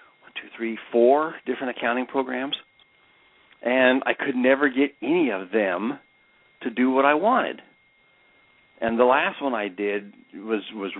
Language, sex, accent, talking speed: English, male, American, 145 wpm